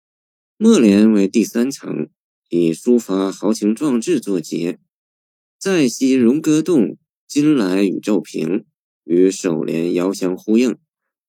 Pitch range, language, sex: 90-145 Hz, Chinese, male